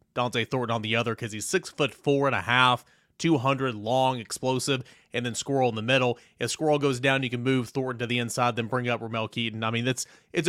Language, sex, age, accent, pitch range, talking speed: English, male, 30-49, American, 115-140 Hz, 240 wpm